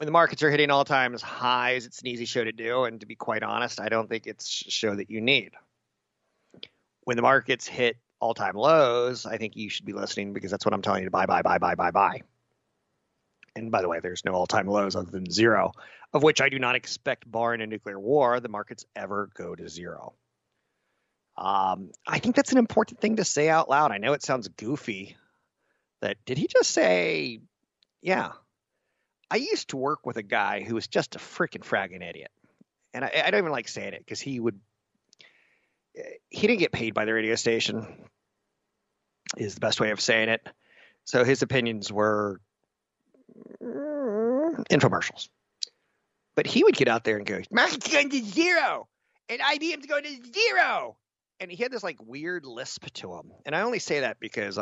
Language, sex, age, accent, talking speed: English, male, 30-49, American, 195 wpm